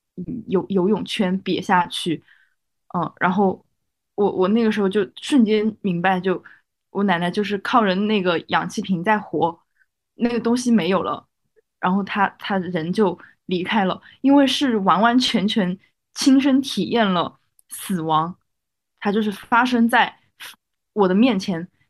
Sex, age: female, 20-39